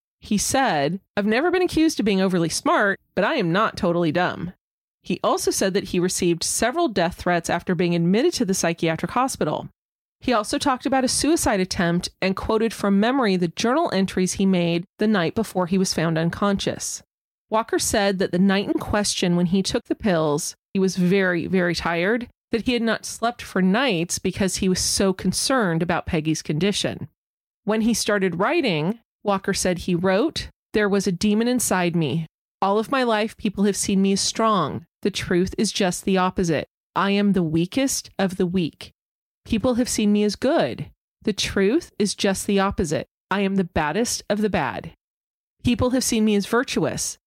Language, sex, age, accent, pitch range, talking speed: English, female, 30-49, American, 180-225 Hz, 190 wpm